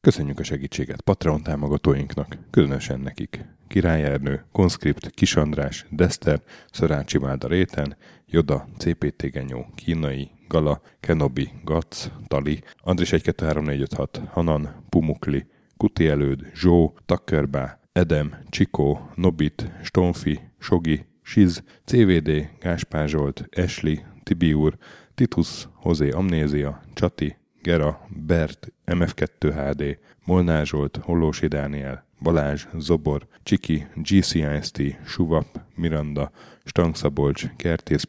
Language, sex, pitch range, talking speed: Hungarian, male, 75-85 Hz, 95 wpm